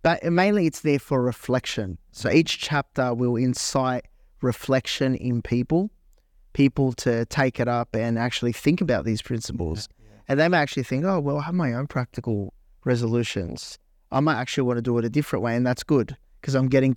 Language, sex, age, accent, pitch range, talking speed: English, male, 30-49, Australian, 115-130 Hz, 190 wpm